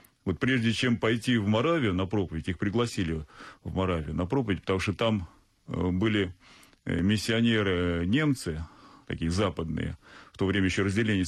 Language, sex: Russian, male